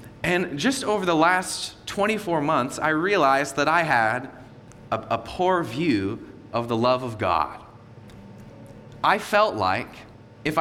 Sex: male